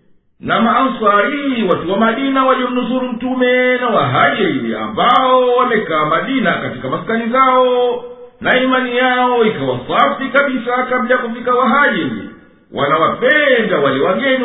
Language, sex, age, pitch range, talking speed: Swahili, male, 50-69, 240-260 Hz, 110 wpm